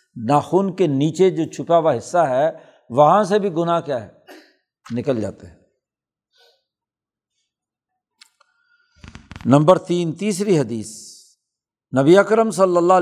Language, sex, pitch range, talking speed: Urdu, male, 145-200 Hz, 115 wpm